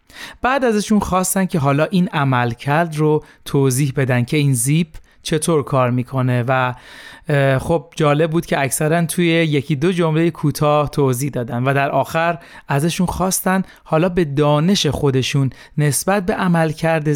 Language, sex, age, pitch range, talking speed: Persian, male, 30-49, 140-175 Hz, 145 wpm